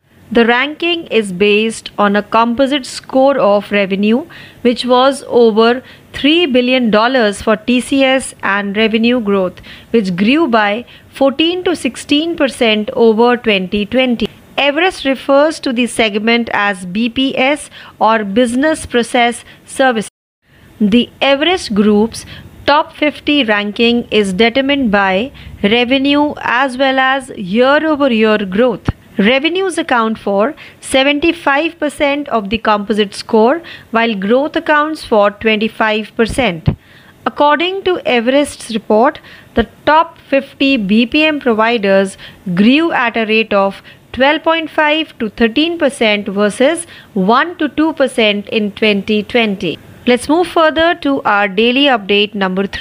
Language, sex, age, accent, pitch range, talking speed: Marathi, female, 30-49, native, 215-280 Hz, 115 wpm